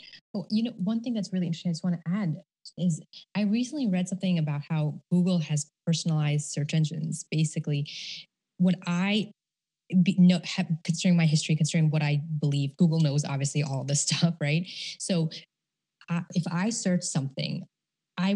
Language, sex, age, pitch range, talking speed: English, female, 20-39, 165-205 Hz, 175 wpm